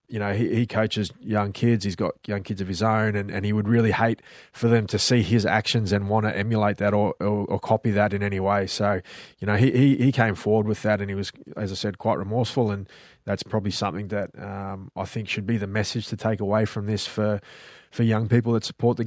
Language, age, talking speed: English, 20-39, 260 wpm